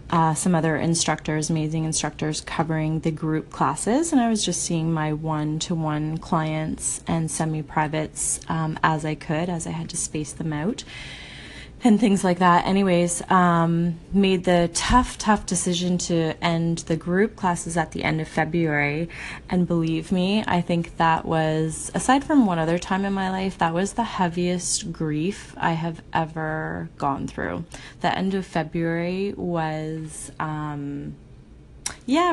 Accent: American